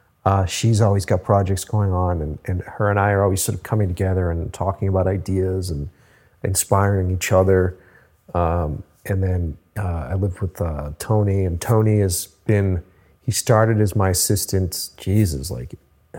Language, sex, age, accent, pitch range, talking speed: English, male, 40-59, American, 90-110 Hz, 170 wpm